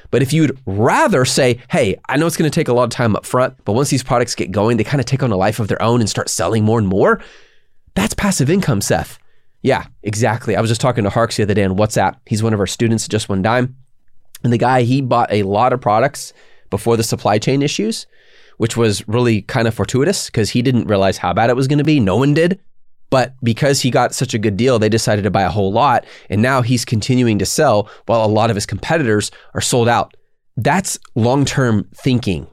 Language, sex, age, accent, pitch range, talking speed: English, male, 30-49, American, 110-140 Hz, 245 wpm